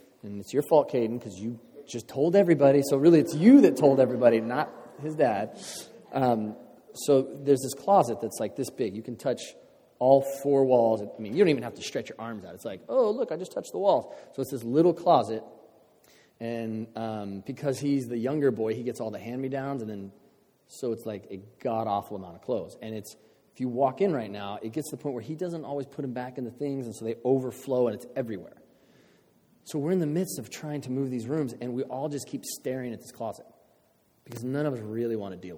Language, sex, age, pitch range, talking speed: English, male, 30-49, 115-145 Hz, 235 wpm